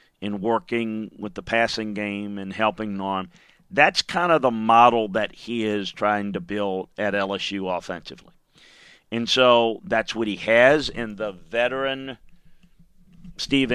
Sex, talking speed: male, 145 wpm